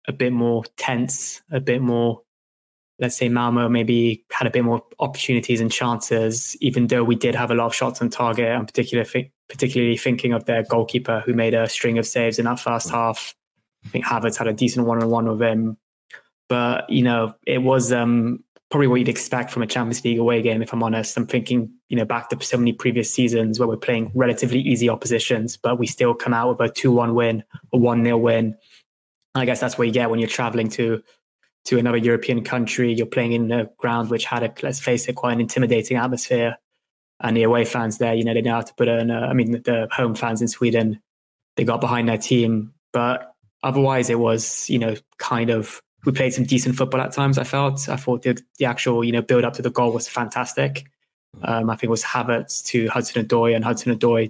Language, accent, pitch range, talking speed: English, British, 115-125 Hz, 215 wpm